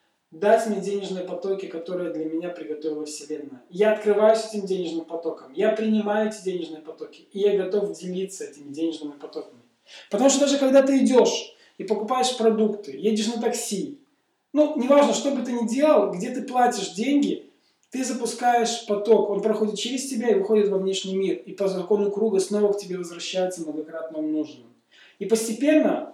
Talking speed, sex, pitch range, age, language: 170 wpm, male, 185-230 Hz, 20-39, Russian